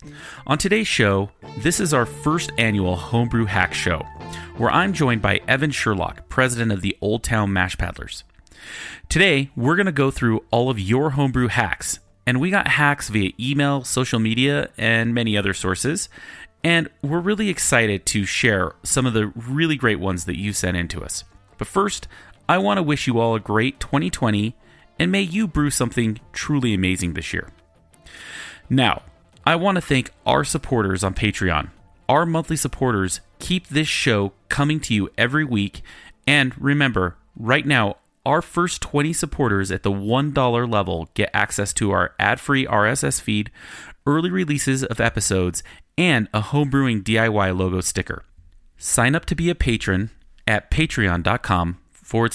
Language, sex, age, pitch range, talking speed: English, male, 30-49, 95-145 Hz, 165 wpm